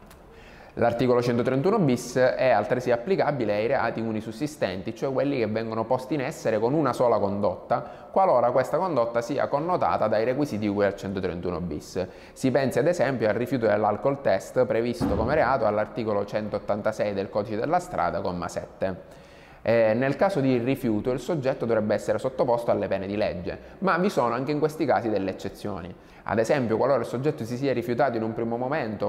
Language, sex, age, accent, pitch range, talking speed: Italian, male, 20-39, native, 105-130 Hz, 175 wpm